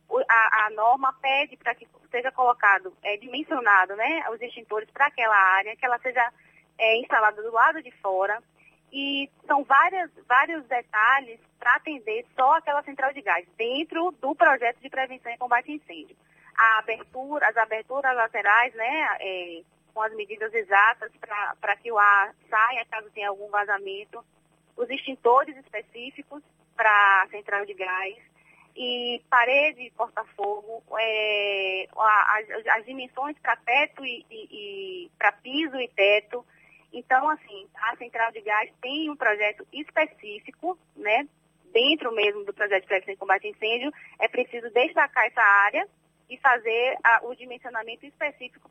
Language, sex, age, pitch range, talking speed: Portuguese, female, 20-39, 210-270 Hz, 140 wpm